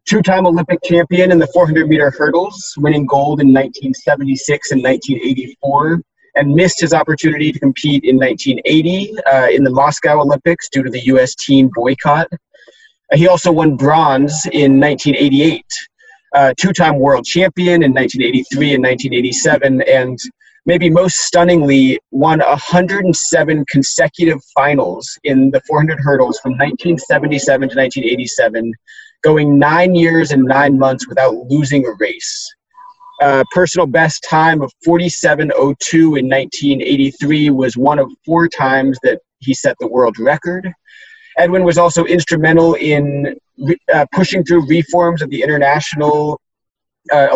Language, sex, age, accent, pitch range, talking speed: English, male, 30-49, American, 135-170 Hz, 135 wpm